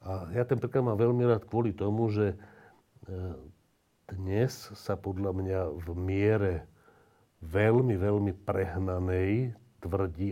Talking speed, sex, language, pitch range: 115 wpm, male, Slovak, 90-110 Hz